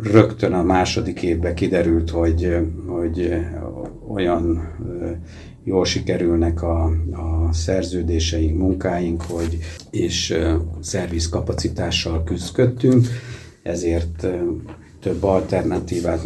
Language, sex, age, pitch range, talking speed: Hungarian, male, 60-79, 85-95 Hz, 75 wpm